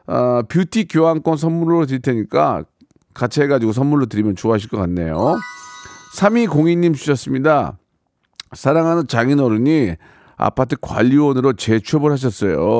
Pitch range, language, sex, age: 115-150 Hz, Korean, male, 40-59